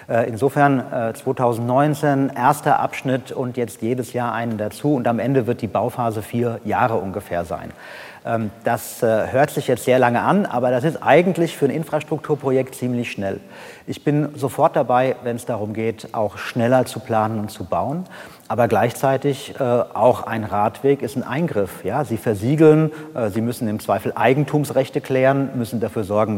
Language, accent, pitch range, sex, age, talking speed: German, German, 115-140 Hz, male, 40-59, 165 wpm